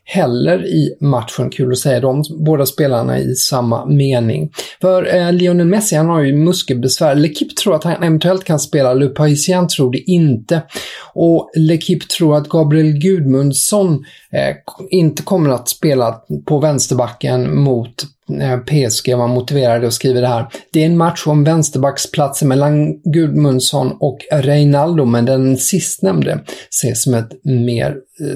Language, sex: English, male